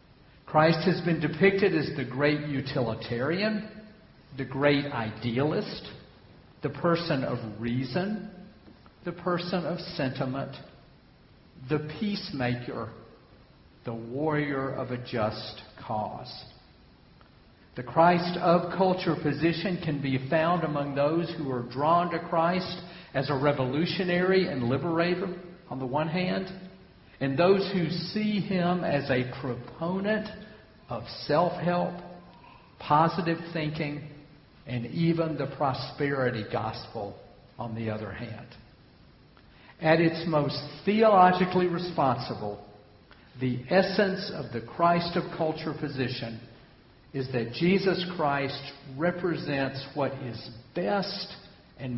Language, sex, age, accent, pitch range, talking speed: English, male, 50-69, American, 125-175 Hz, 110 wpm